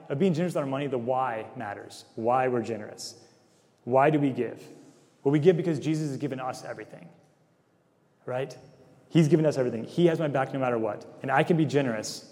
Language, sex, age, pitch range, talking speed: English, male, 30-49, 120-145 Hz, 205 wpm